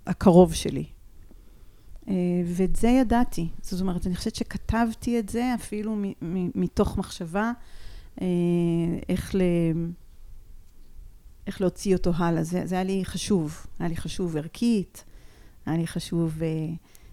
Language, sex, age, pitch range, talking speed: Hebrew, female, 40-59, 170-200 Hz, 105 wpm